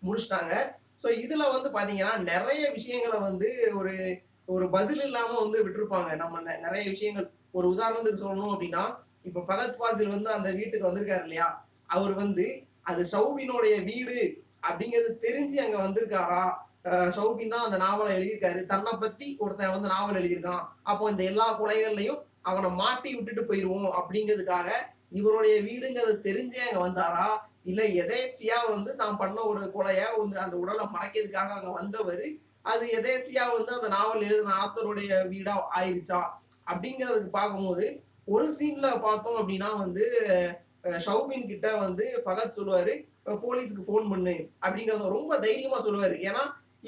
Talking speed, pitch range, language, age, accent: 140 wpm, 190-230 Hz, Tamil, 20-39, native